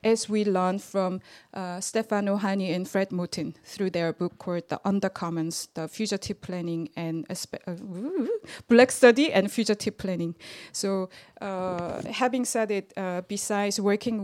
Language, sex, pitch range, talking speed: English, female, 180-215 Hz, 155 wpm